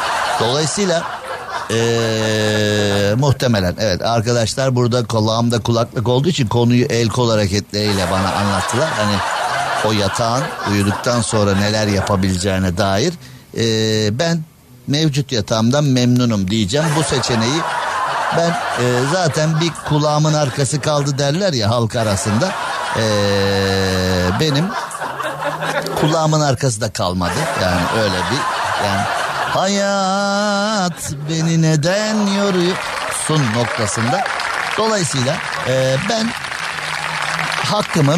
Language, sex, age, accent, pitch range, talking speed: Turkish, male, 60-79, native, 110-165 Hz, 95 wpm